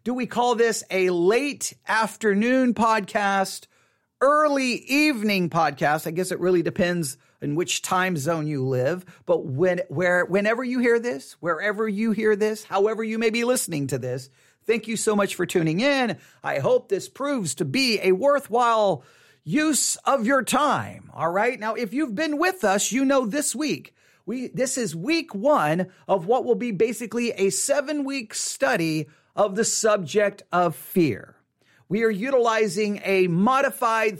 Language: English